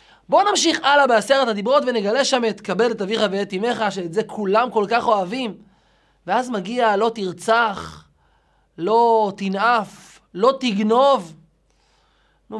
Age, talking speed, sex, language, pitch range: 30-49, 135 wpm, male, Hebrew, 220-325 Hz